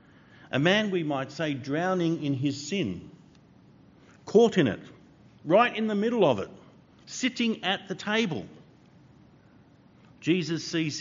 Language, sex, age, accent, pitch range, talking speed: English, male, 50-69, Australian, 125-165 Hz, 130 wpm